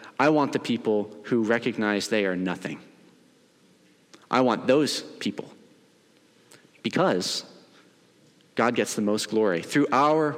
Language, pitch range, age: English, 110-155 Hz, 40-59